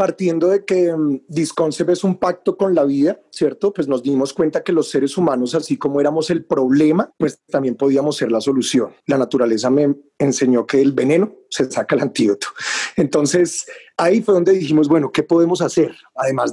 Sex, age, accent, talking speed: male, 30-49, Colombian, 185 wpm